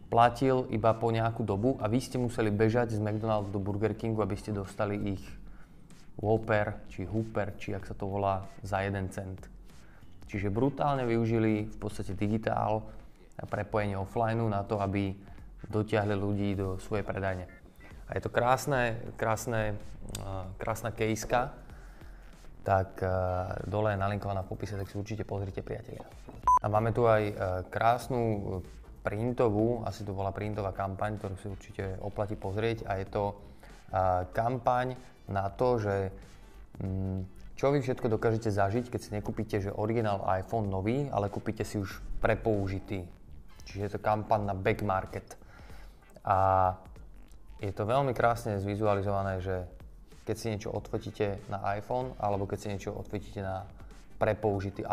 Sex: male